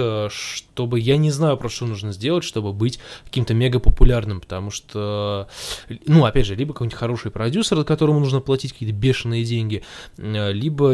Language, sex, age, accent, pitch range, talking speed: Russian, male, 20-39, native, 110-155 Hz, 155 wpm